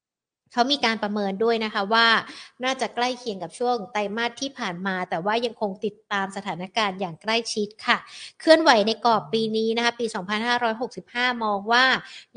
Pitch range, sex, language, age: 200-245 Hz, female, Thai, 60-79